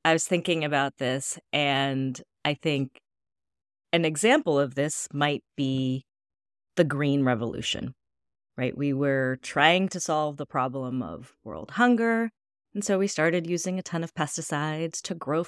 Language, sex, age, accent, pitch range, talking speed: English, female, 30-49, American, 140-185 Hz, 150 wpm